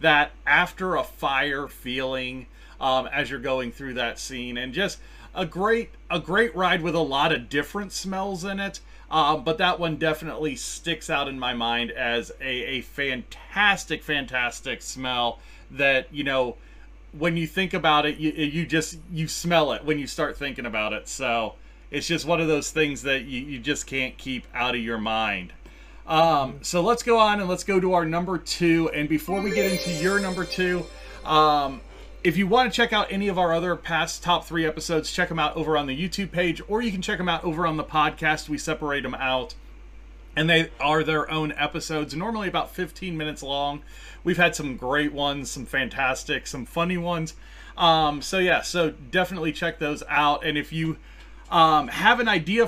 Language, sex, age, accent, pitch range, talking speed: English, male, 30-49, American, 145-175 Hz, 195 wpm